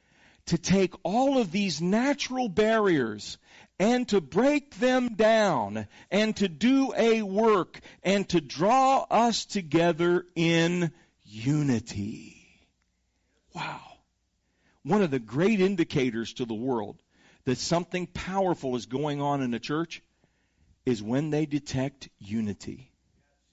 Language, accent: English, American